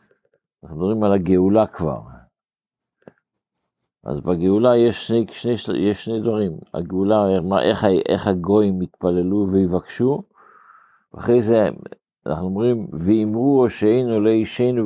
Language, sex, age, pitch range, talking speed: Hebrew, male, 50-69, 95-120 Hz, 115 wpm